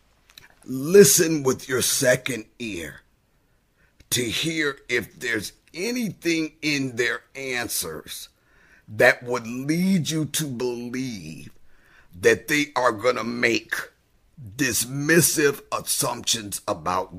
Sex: male